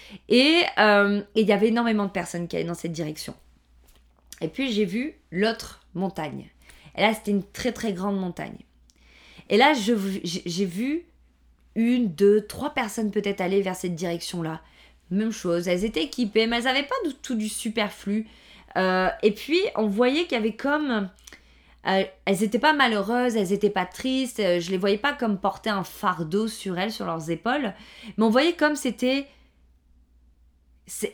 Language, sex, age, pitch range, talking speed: French, female, 20-39, 185-245 Hz, 180 wpm